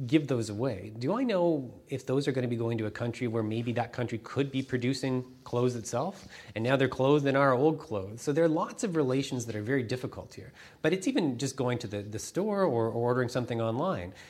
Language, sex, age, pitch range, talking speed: English, male, 30-49, 105-130 Hz, 245 wpm